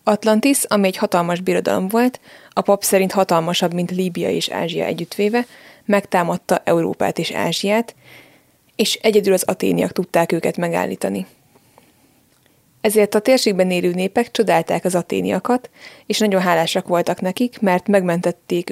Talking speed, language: 130 wpm, Hungarian